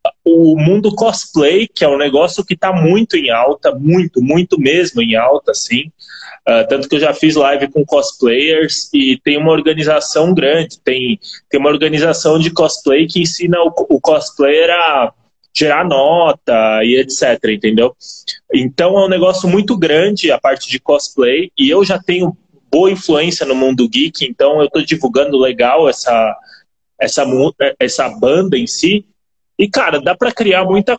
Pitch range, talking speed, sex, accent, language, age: 155-210 Hz, 165 wpm, male, Brazilian, Portuguese, 20-39